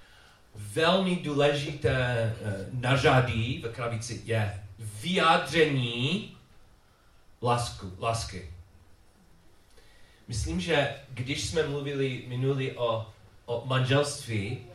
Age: 40-59